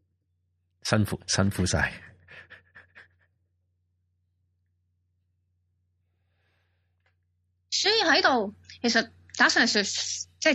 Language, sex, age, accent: Chinese, female, 20-39, native